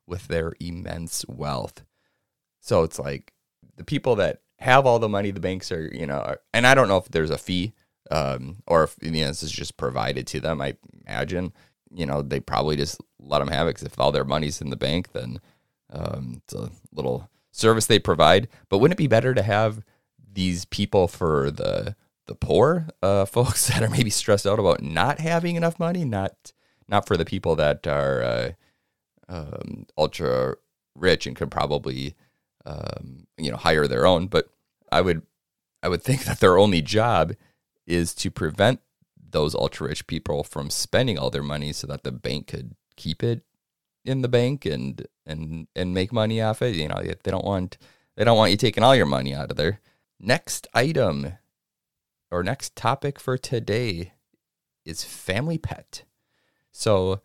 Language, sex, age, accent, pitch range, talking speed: English, male, 30-49, American, 80-120 Hz, 185 wpm